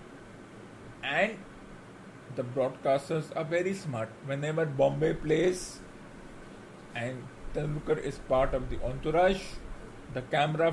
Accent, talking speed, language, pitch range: Indian, 100 wpm, English, 135-160 Hz